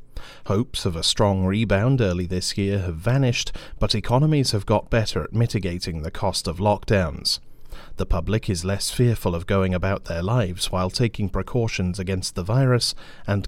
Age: 40-59